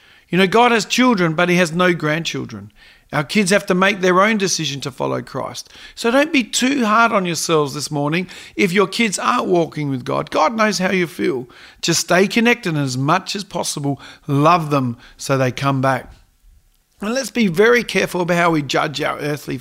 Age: 40-59